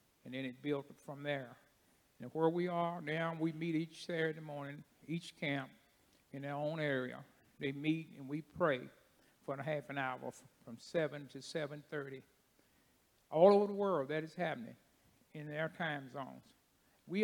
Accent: American